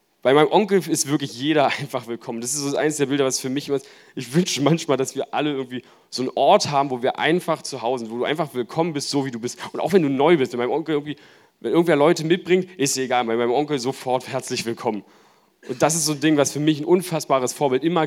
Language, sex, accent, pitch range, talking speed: German, male, German, 120-150 Hz, 265 wpm